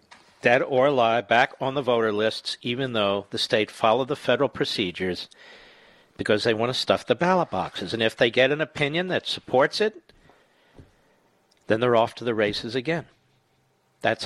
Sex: male